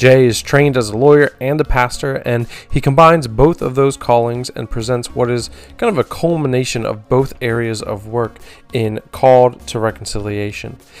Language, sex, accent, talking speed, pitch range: English, male, American, 180 wpm, 120-150 Hz